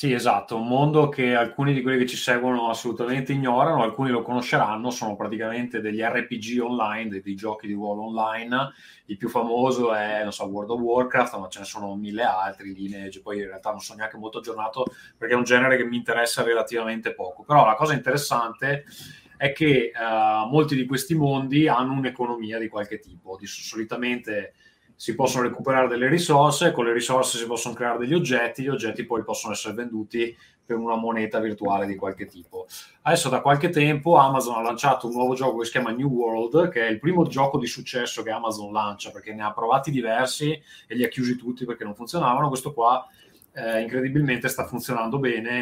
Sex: male